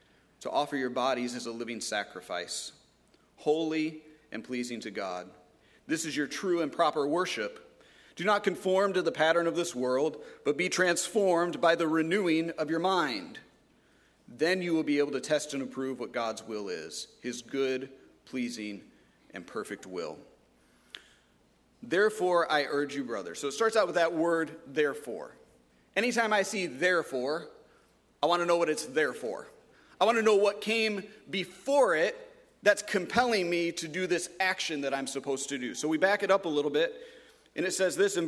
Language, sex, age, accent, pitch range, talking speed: English, male, 40-59, American, 150-200 Hz, 180 wpm